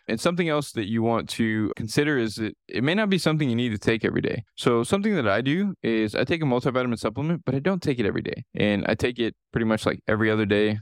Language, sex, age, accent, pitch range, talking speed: English, male, 20-39, American, 105-125 Hz, 270 wpm